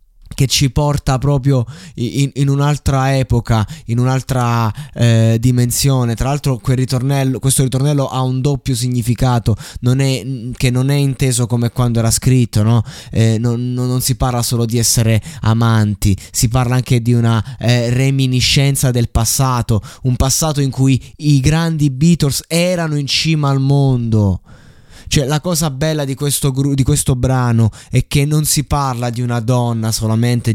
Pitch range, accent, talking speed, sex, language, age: 120-140 Hz, native, 150 wpm, male, Italian, 20-39